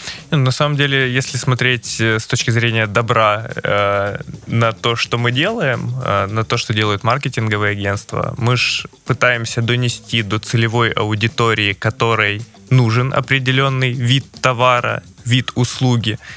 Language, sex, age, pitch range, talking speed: Russian, male, 20-39, 110-135 Hz, 130 wpm